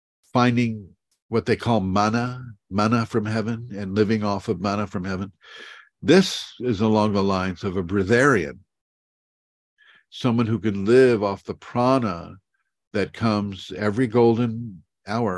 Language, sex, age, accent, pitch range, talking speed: English, male, 50-69, American, 90-115 Hz, 135 wpm